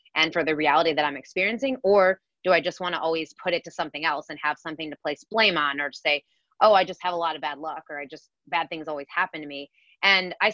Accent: American